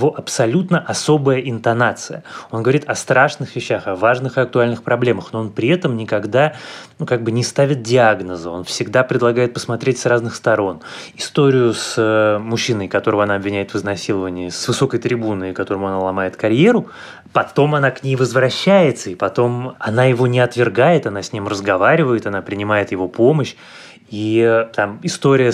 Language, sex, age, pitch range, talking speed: Russian, male, 20-39, 105-135 Hz, 160 wpm